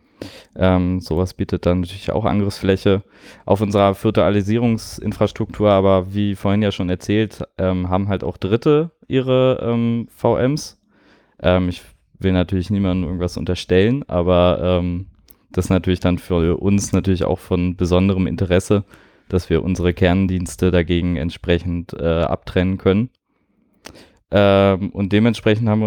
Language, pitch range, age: German, 90-105 Hz, 20-39